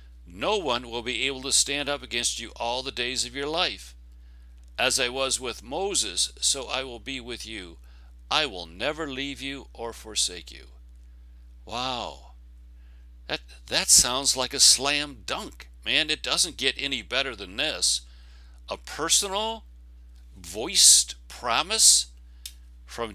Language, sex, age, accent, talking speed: English, male, 60-79, American, 145 wpm